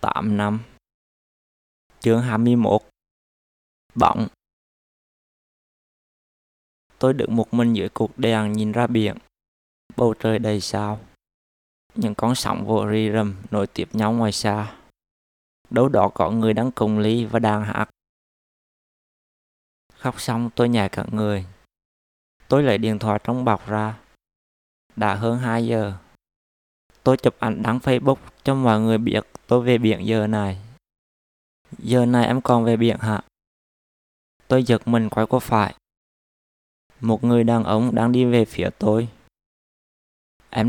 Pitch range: 100-120 Hz